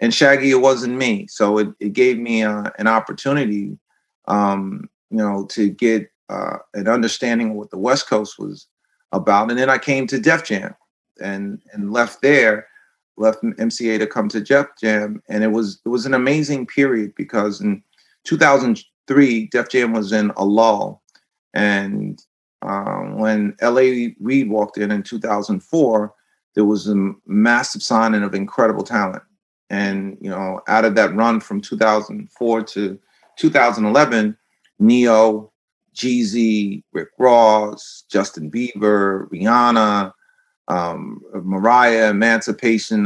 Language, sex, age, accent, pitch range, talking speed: English, male, 40-59, American, 105-125 Hz, 140 wpm